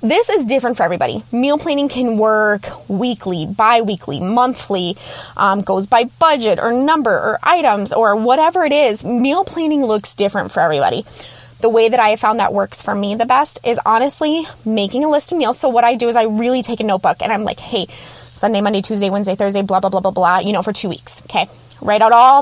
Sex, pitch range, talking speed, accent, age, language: female, 200-260 Hz, 220 wpm, American, 20-39, English